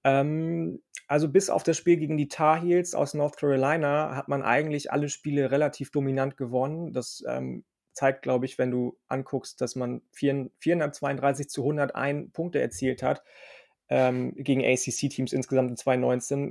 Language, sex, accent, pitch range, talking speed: German, male, German, 130-150 Hz, 155 wpm